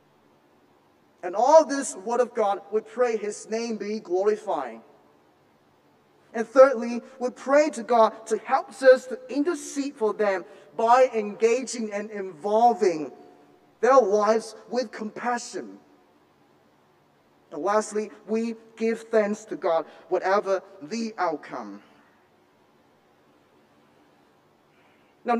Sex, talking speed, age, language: male, 105 wpm, 30-49, English